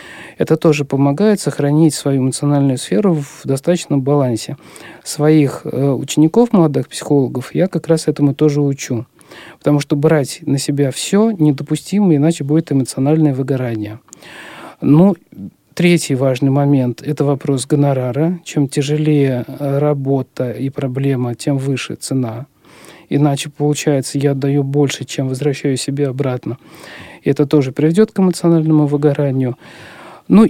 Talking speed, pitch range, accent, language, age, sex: 125 wpm, 135-160 Hz, native, Russian, 50-69, male